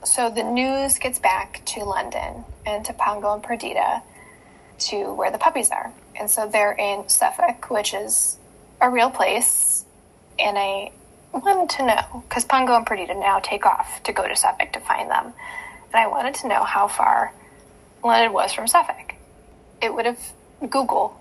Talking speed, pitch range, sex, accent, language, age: 175 wpm, 205-270 Hz, female, American, English, 10-29